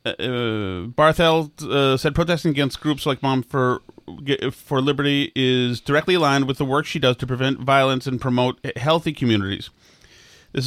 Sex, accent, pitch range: male, American, 135-185 Hz